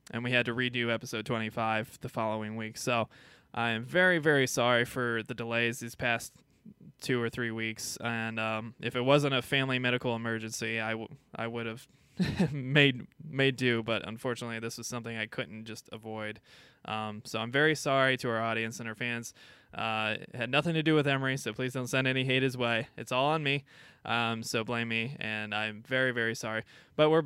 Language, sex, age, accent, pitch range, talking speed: English, male, 20-39, American, 115-130 Hz, 205 wpm